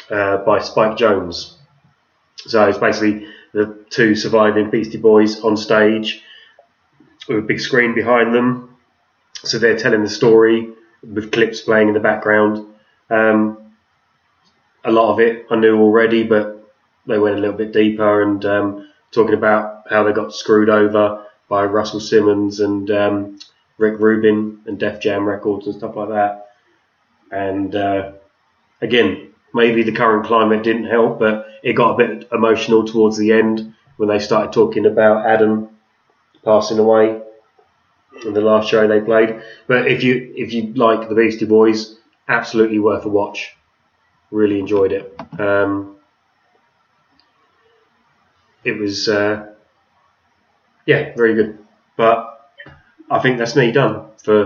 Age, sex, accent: 20-39, male, British